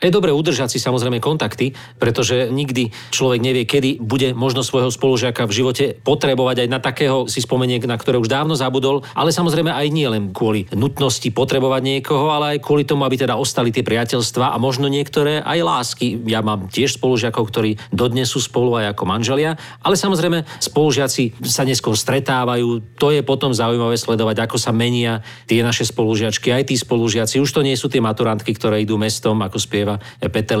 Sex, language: male, Slovak